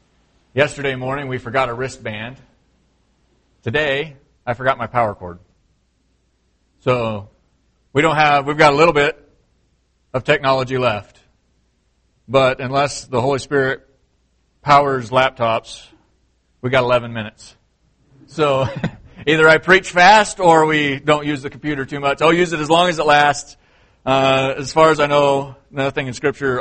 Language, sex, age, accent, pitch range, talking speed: English, male, 40-59, American, 120-170 Hz, 145 wpm